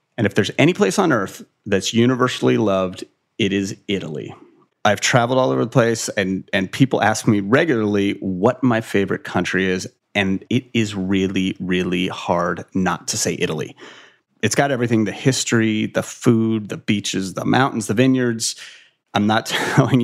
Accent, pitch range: American, 100-125 Hz